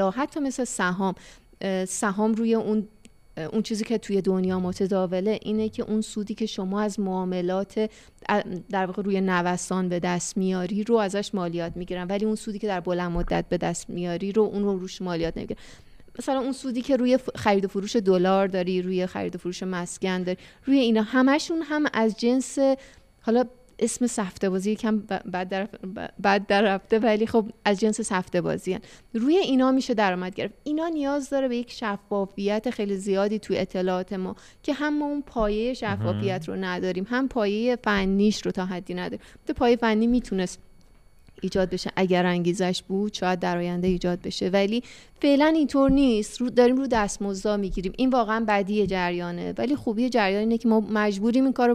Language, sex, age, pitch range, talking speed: Persian, female, 30-49, 185-230 Hz, 175 wpm